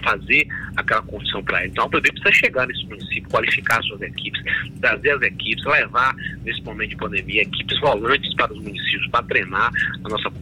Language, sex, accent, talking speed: Portuguese, male, Brazilian, 190 wpm